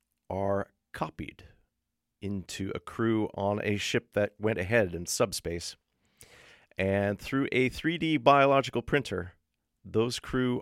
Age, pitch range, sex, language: 40-59, 90-135 Hz, male, English